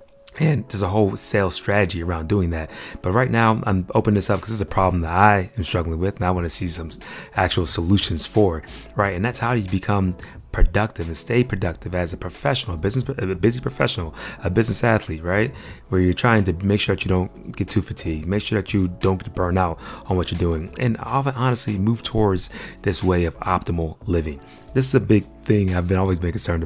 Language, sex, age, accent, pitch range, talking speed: English, male, 30-49, American, 90-105 Hz, 225 wpm